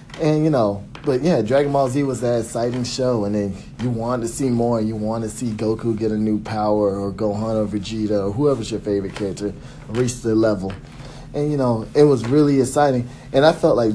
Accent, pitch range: American, 115-135 Hz